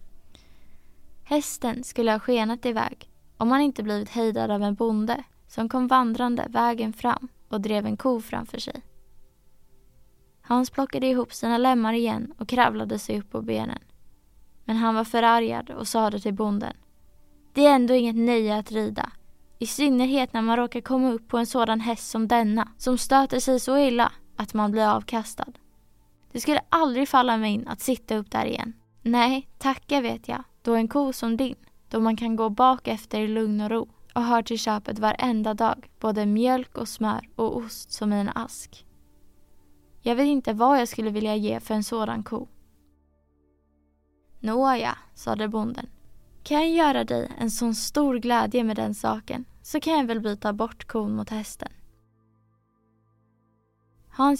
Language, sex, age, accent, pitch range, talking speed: Swedish, female, 20-39, Norwegian, 210-245 Hz, 170 wpm